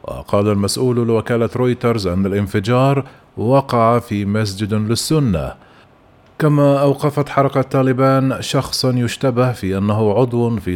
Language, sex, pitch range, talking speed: Arabic, male, 105-125 Hz, 110 wpm